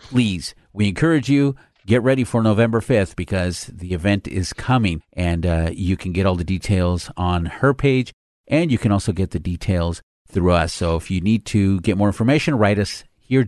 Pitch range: 95-120 Hz